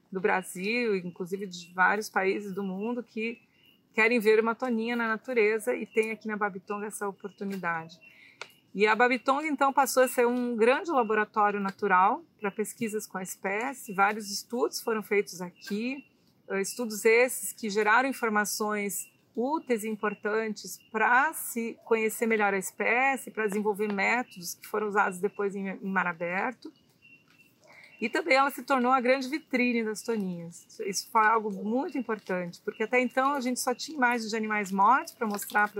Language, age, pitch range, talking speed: Portuguese, 40-59, 200-245 Hz, 160 wpm